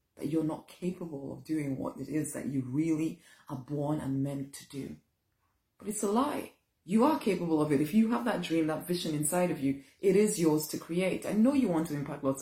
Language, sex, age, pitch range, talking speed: English, female, 30-49, 155-215 Hz, 230 wpm